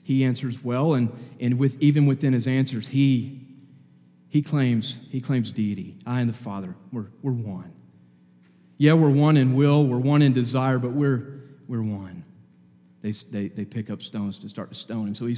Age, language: 40-59, English